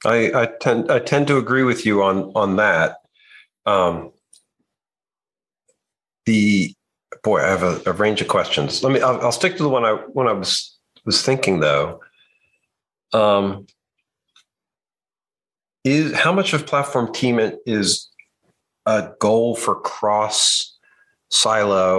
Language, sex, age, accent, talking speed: English, male, 50-69, American, 140 wpm